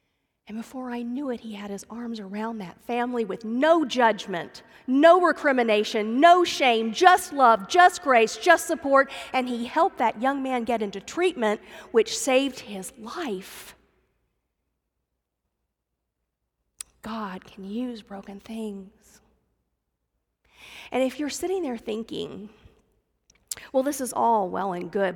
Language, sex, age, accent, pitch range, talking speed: English, female, 40-59, American, 190-245 Hz, 135 wpm